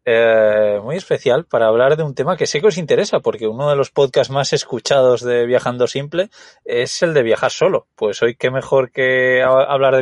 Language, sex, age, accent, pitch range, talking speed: Spanish, male, 20-39, Spanish, 115-180 Hz, 215 wpm